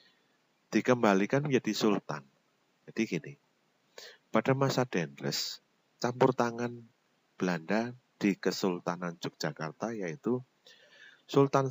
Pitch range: 85-115 Hz